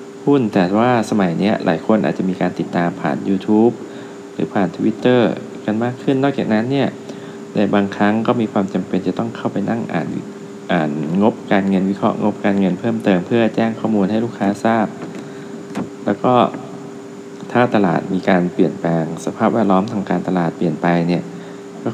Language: Thai